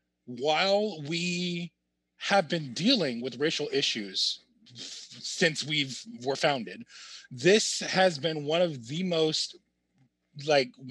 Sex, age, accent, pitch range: male, 30-49, American, 135-185 Hz